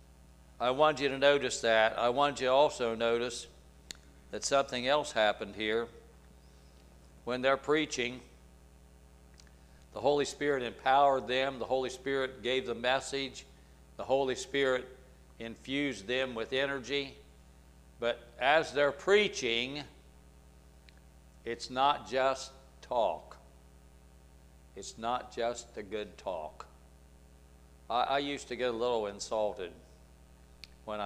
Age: 60-79